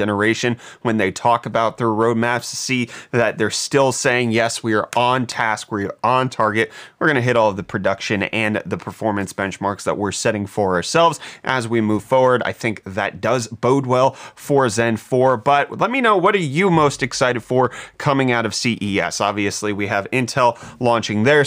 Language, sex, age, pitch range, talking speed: English, male, 30-49, 115-145 Hz, 200 wpm